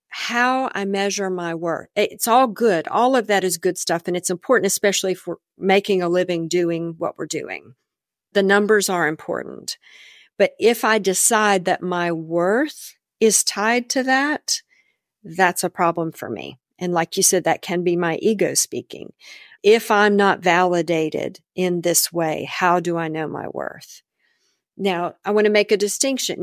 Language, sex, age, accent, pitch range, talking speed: English, female, 50-69, American, 170-215 Hz, 175 wpm